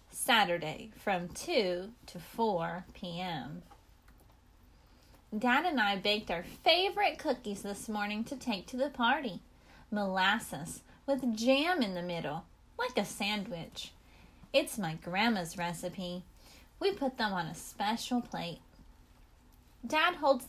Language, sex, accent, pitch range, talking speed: English, female, American, 195-290 Hz, 125 wpm